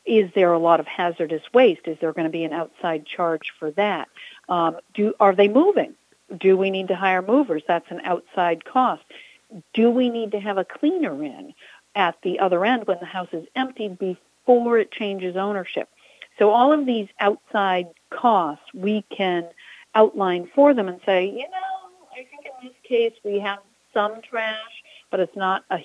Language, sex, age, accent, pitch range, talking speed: English, female, 50-69, American, 180-230 Hz, 185 wpm